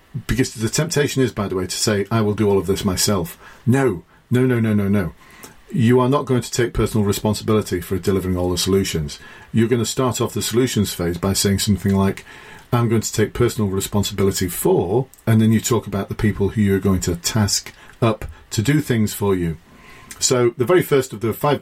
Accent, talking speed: British, 220 wpm